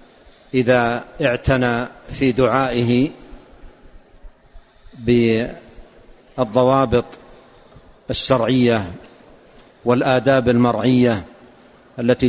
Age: 50-69